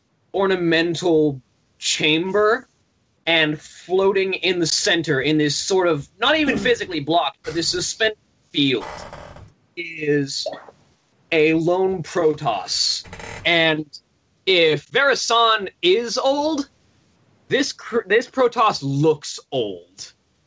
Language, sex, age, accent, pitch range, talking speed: English, male, 20-39, American, 130-175 Hz, 100 wpm